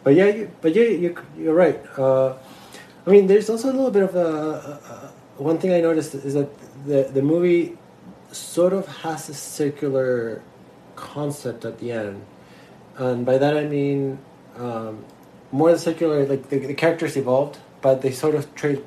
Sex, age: male, 20-39